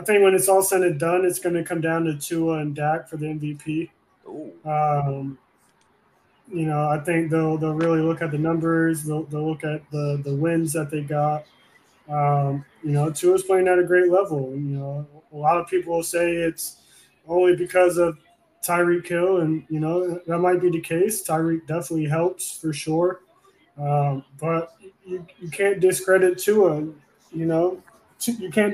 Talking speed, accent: 185 wpm, American